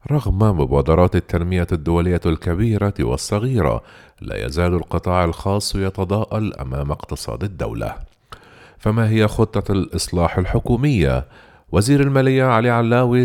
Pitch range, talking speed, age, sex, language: 85-120 Hz, 105 wpm, 40-59, male, Arabic